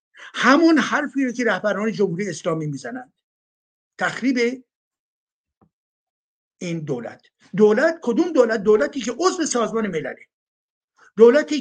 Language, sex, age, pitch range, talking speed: Persian, male, 60-79, 185-250 Hz, 105 wpm